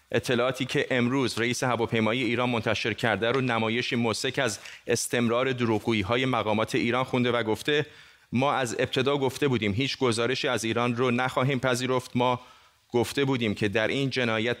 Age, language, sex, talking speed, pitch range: 30-49, Persian, male, 155 wpm, 115-135 Hz